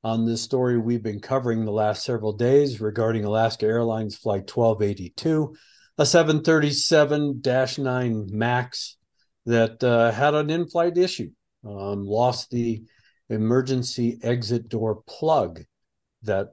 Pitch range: 110-135 Hz